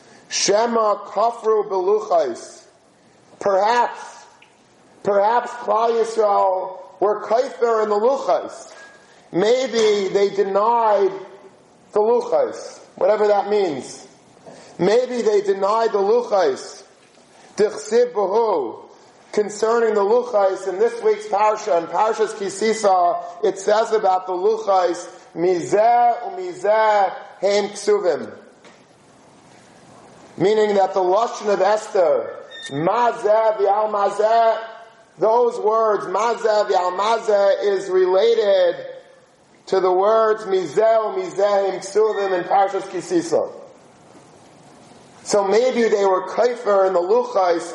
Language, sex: English, male